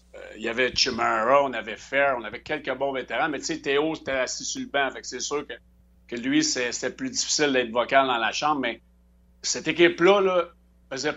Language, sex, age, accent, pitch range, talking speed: French, male, 60-79, Canadian, 115-165 Hz, 220 wpm